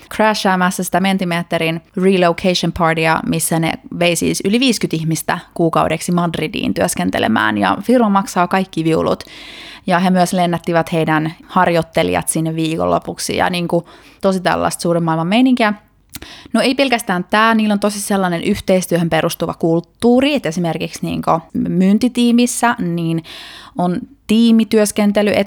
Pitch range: 170-215 Hz